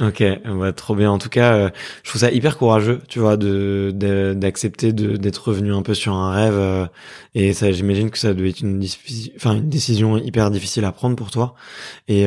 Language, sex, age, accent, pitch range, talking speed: French, male, 20-39, French, 100-115 Hz, 225 wpm